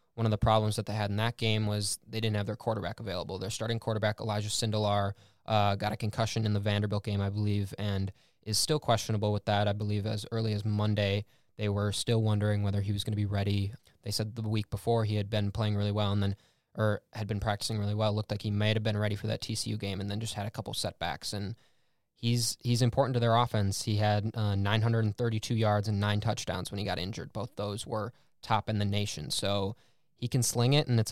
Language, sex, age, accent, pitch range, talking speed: English, male, 20-39, American, 105-115 Hz, 245 wpm